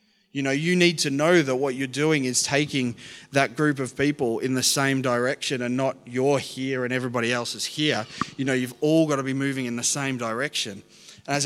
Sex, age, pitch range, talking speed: male, 20-39, 120-150 Hz, 225 wpm